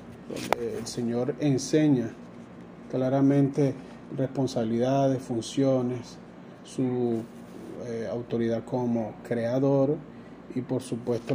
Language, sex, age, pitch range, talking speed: Spanish, male, 30-49, 125-165 Hz, 80 wpm